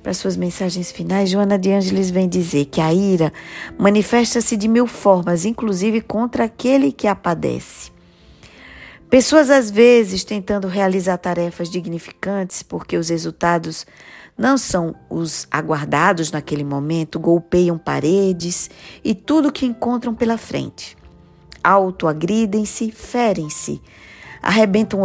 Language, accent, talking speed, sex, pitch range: Portuguese, Brazilian, 115 wpm, female, 165-215 Hz